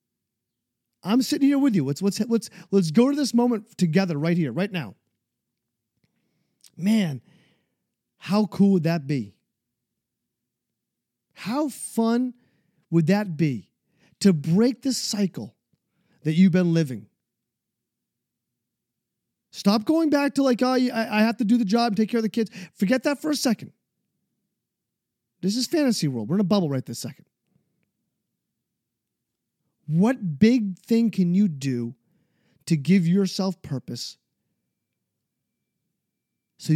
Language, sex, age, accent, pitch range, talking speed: English, male, 40-59, American, 155-215 Hz, 130 wpm